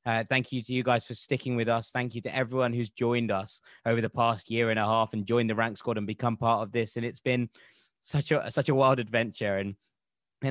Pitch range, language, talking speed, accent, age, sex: 115-135 Hz, English, 255 wpm, British, 20-39, male